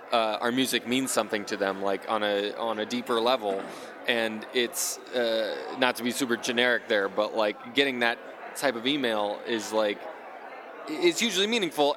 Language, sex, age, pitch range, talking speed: English, male, 20-39, 115-135 Hz, 175 wpm